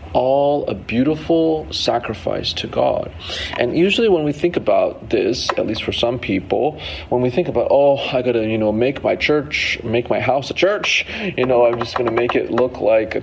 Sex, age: male, 40-59